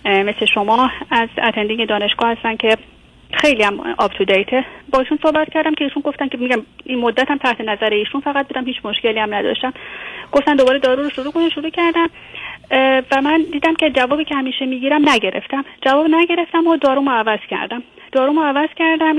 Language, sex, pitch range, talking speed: Persian, female, 215-280 Hz, 180 wpm